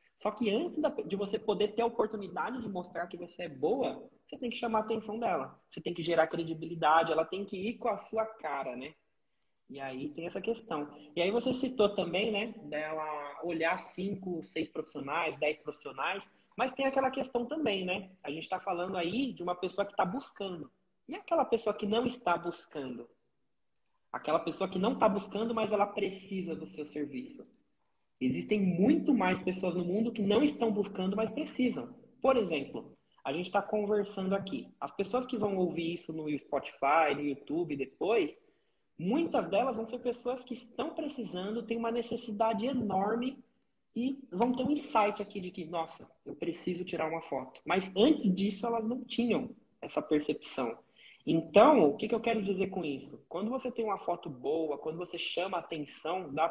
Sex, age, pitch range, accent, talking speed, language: male, 20-39, 165-230 Hz, Brazilian, 185 wpm, Portuguese